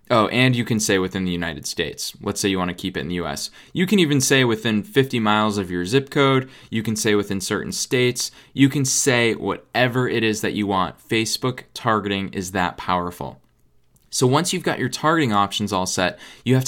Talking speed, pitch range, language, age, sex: 220 wpm, 105-140 Hz, English, 20-39, male